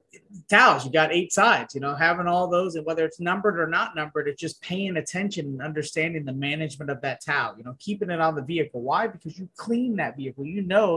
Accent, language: American, English